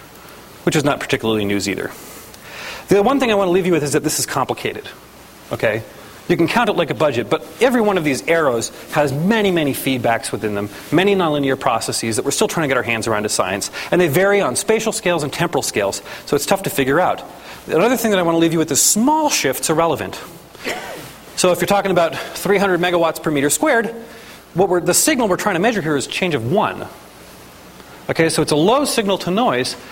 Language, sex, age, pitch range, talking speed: English, male, 30-49, 140-200 Hz, 230 wpm